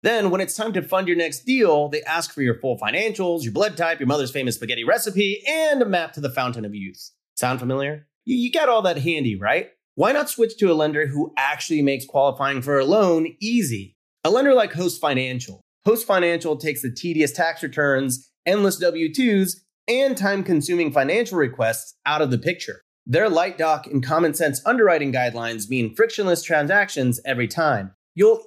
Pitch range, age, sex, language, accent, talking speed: 130-195 Hz, 30-49, male, English, American, 190 wpm